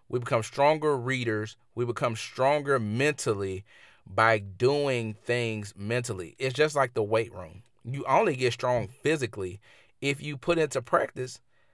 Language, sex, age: English, male, 30-49